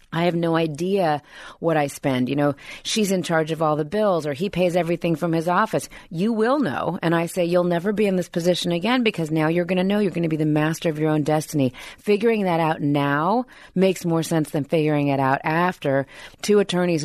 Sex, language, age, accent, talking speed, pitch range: female, English, 30-49, American, 230 wpm, 150-180 Hz